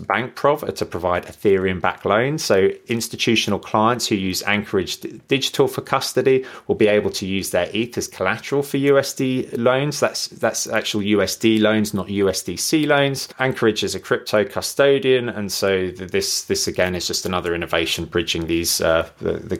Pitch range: 90-115 Hz